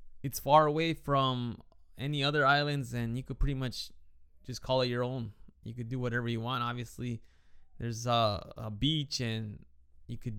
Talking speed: 180 wpm